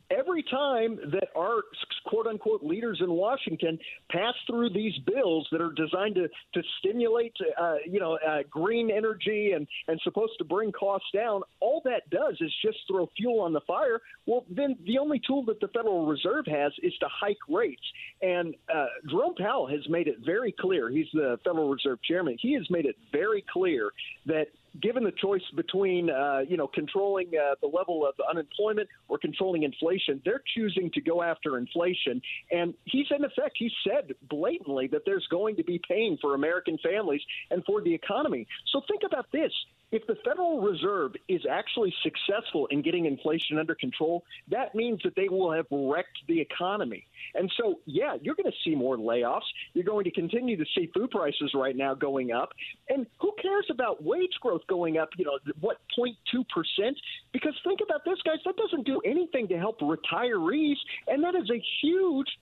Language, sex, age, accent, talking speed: English, male, 50-69, American, 185 wpm